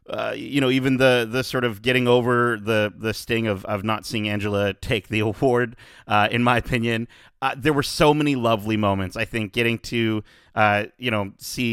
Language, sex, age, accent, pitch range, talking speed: English, male, 30-49, American, 105-140 Hz, 205 wpm